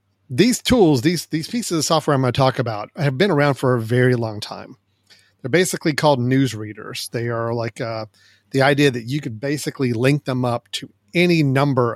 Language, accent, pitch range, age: English, American, 115-140 Hz, 40-59